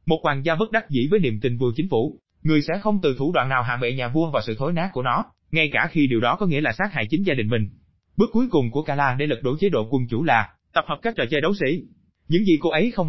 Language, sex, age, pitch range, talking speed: Vietnamese, male, 20-39, 125-175 Hz, 310 wpm